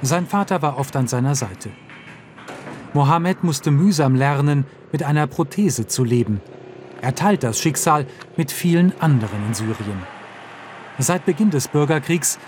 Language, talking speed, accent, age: German, 140 wpm, German, 40-59